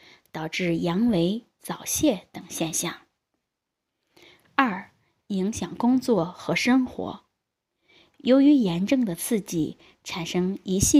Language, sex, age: Chinese, female, 20-39